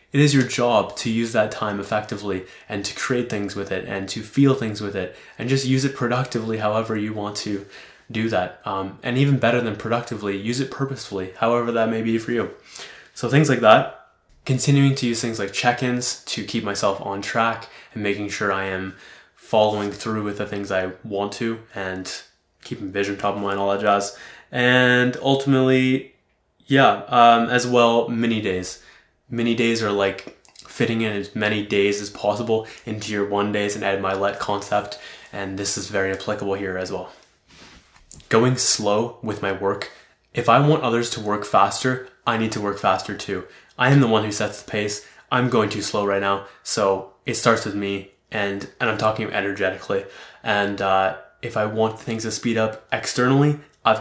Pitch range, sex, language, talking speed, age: 100-120 Hz, male, English, 190 wpm, 20-39